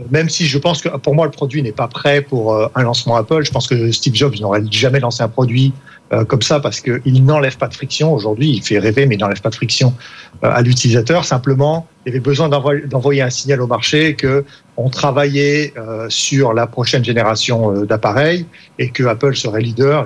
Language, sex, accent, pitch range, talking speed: French, male, French, 125-155 Hz, 200 wpm